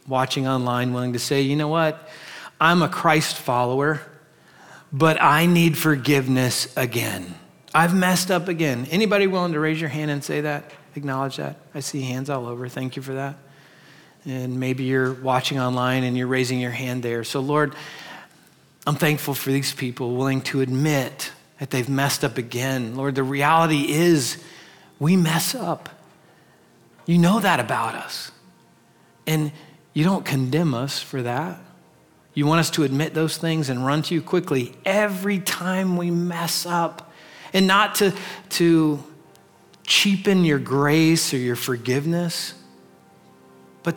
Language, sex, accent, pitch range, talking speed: English, male, American, 130-165 Hz, 155 wpm